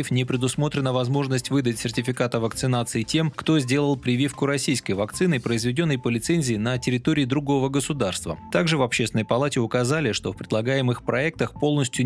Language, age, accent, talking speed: Russian, 20-39, native, 150 wpm